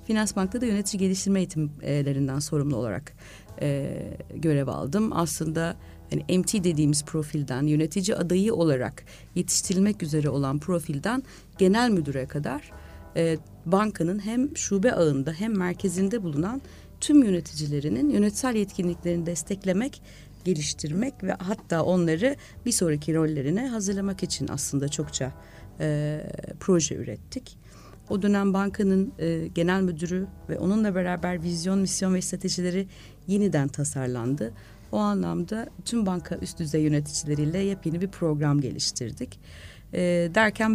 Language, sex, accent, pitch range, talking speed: Turkish, female, native, 150-195 Hz, 120 wpm